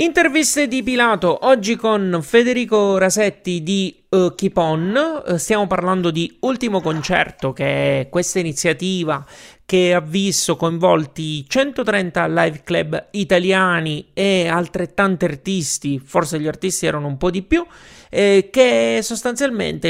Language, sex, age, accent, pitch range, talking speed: Italian, male, 30-49, native, 145-190 Hz, 120 wpm